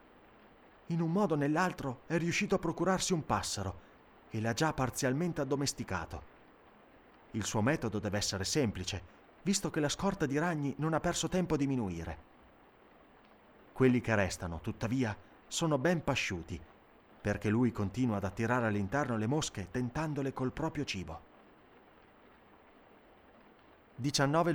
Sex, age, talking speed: male, 30-49, 130 wpm